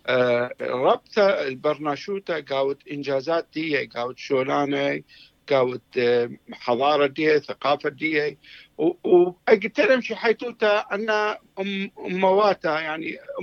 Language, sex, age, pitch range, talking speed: English, male, 60-79, 155-210 Hz, 75 wpm